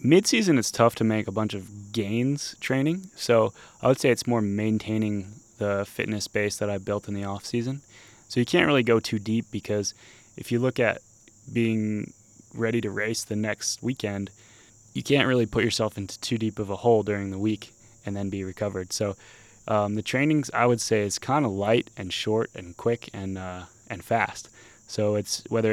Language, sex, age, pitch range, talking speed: English, male, 20-39, 100-115 Hz, 205 wpm